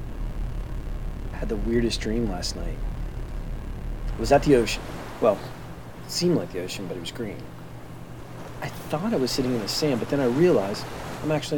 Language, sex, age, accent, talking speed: English, male, 40-59, American, 165 wpm